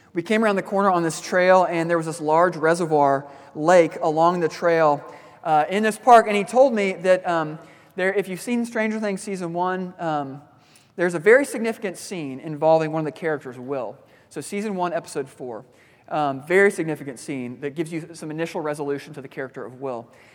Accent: American